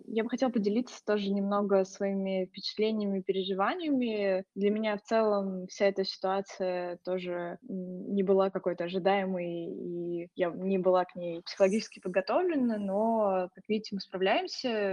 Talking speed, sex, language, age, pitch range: 135 wpm, female, Russian, 20-39, 190-215 Hz